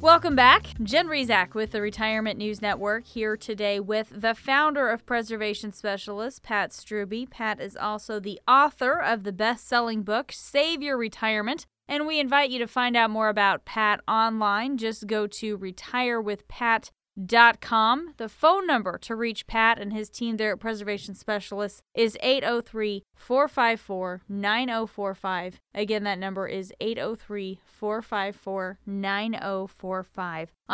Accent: American